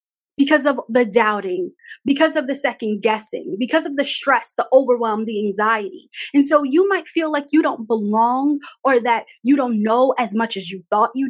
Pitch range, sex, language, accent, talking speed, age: 235-315 Hz, female, English, American, 195 wpm, 20-39